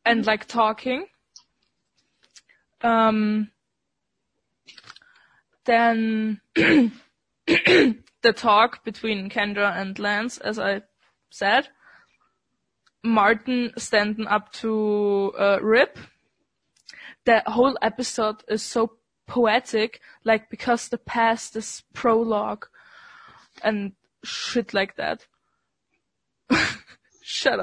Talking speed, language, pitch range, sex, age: 80 wpm, English, 215-250 Hz, female, 20-39